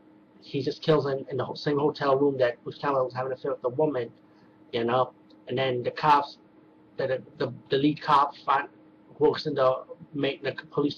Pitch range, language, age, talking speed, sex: 125-150 Hz, English, 30-49, 210 wpm, male